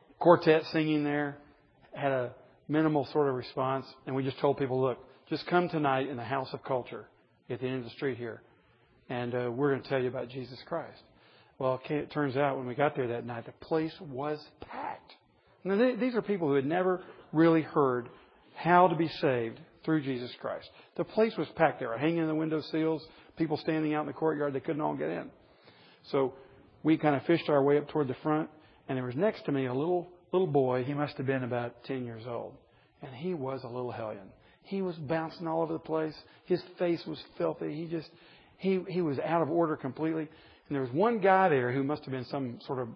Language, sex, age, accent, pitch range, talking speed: English, male, 40-59, American, 130-160 Hz, 220 wpm